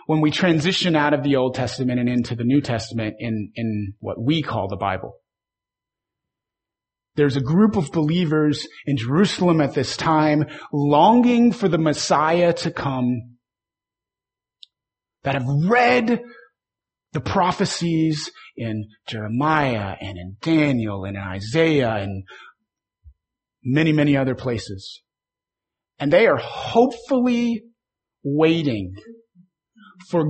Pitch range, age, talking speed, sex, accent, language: 110-160 Hz, 30-49, 120 wpm, male, American, English